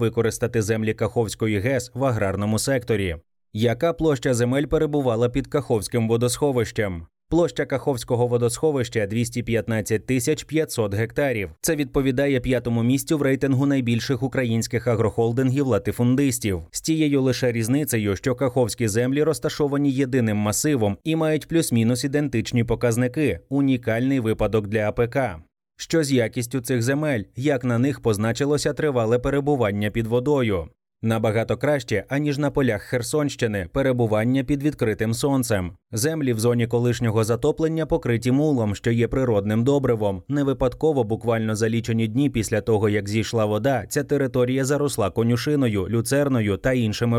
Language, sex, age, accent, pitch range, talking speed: Ukrainian, male, 20-39, native, 115-140 Hz, 130 wpm